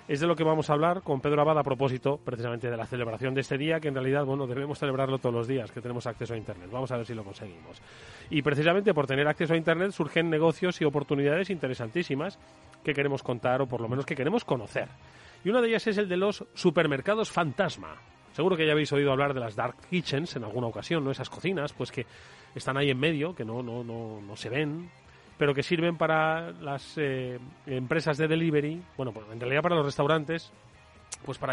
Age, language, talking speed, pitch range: 30-49, Spanish, 225 wpm, 130-165 Hz